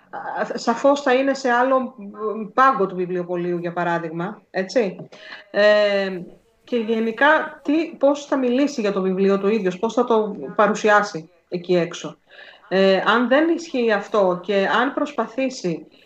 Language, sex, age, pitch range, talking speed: Greek, female, 30-49, 180-245 Hz, 135 wpm